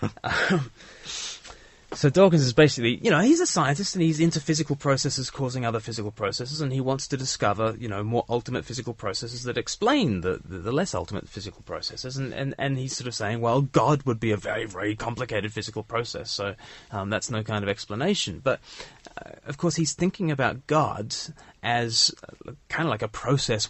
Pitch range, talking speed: 110-140 Hz, 190 wpm